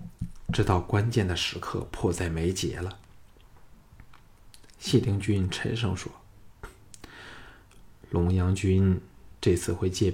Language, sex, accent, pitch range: Chinese, male, native, 85-105 Hz